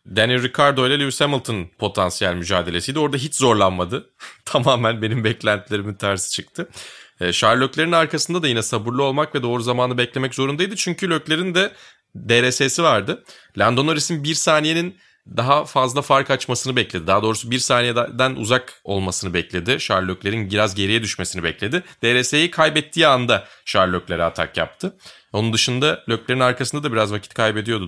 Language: Turkish